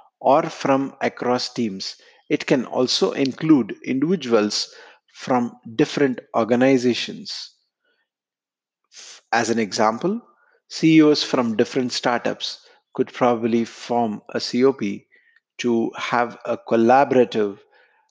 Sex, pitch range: male, 115-140 Hz